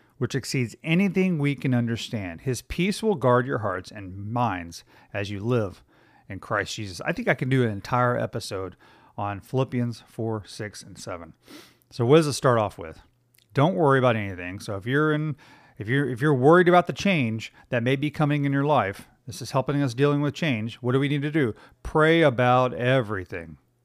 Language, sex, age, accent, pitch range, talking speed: English, male, 40-59, American, 115-145 Hz, 200 wpm